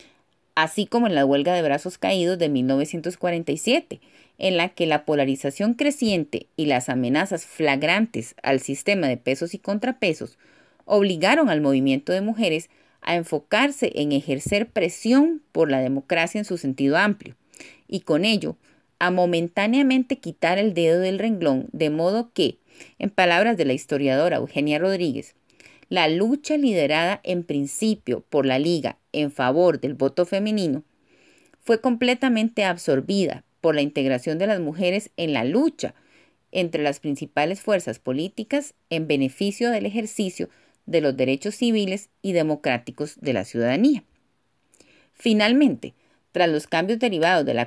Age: 30-49